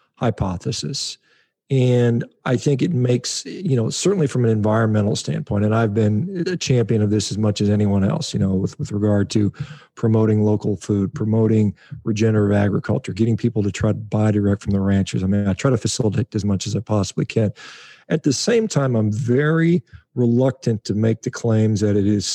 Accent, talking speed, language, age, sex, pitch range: American, 195 wpm, English, 40-59, male, 105-125 Hz